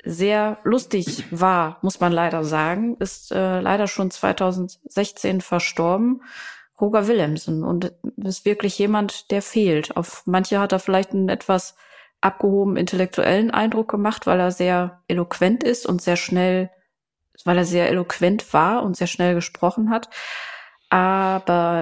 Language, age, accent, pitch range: German, 20-39, German, 175-200 Hz